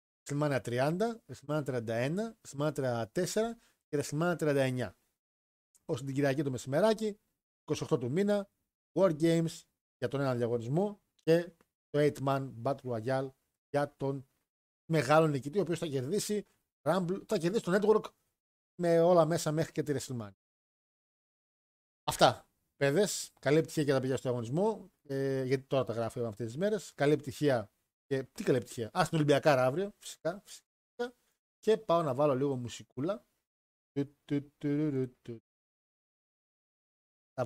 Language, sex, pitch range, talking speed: Greek, male, 120-165 Hz, 125 wpm